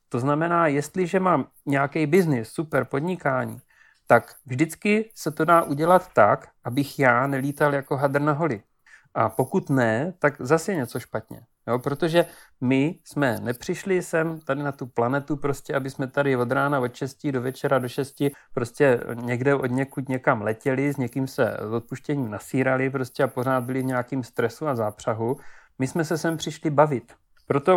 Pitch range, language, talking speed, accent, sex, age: 130-160 Hz, Czech, 170 wpm, native, male, 40-59